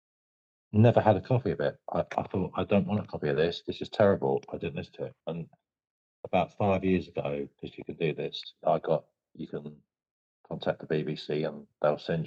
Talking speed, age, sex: 215 wpm, 50-69, male